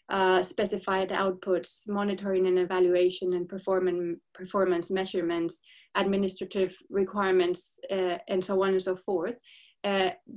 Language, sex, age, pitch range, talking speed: English, female, 20-39, 185-200 Hz, 115 wpm